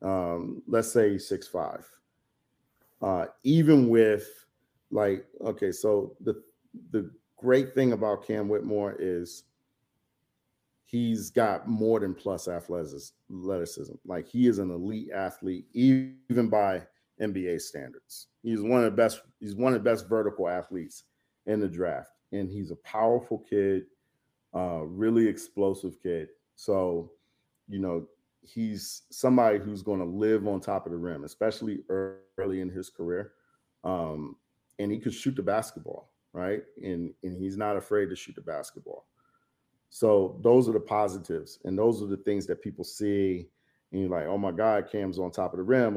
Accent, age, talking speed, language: American, 40-59, 155 wpm, English